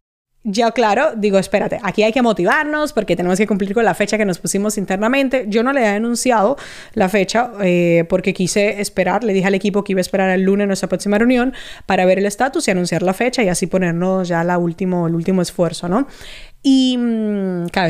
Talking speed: 210 wpm